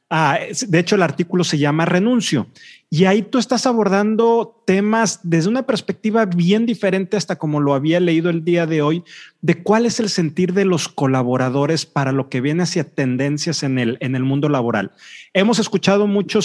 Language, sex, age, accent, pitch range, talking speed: Spanish, male, 40-59, Mexican, 150-195 Hz, 185 wpm